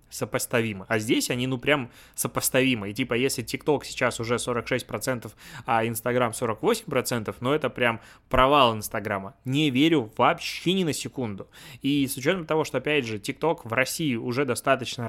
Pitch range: 115-135 Hz